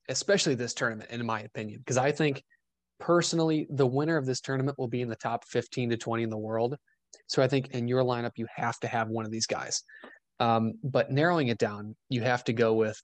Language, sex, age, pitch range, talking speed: English, male, 20-39, 110-130 Hz, 230 wpm